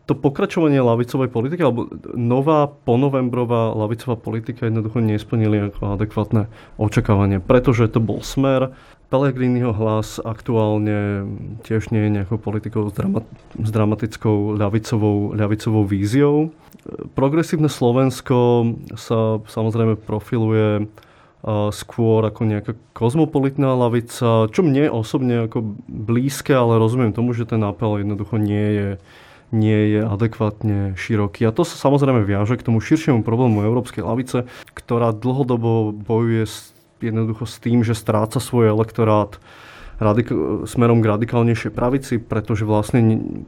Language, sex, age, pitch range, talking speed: Slovak, male, 20-39, 105-120 Hz, 120 wpm